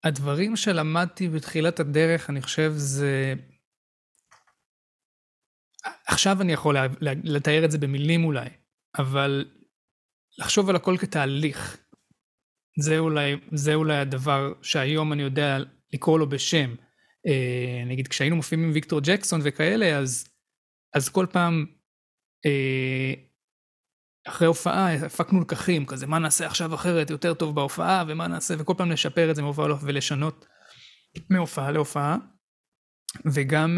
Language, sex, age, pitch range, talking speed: Hebrew, male, 20-39, 140-170 Hz, 125 wpm